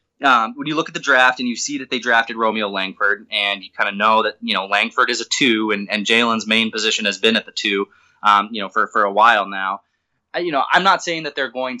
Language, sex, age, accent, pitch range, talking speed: English, male, 20-39, American, 110-160 Hz, 270 wpm